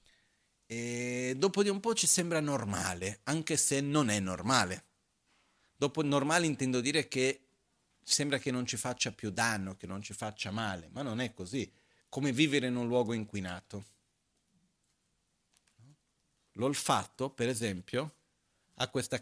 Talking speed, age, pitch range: 135 wpm, 40-59, 100-145 Hz